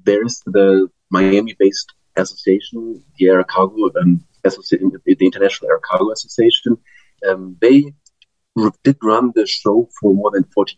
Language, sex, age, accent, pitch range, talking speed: English, male, 30-49, German, 95-130 Hz, 145 wpm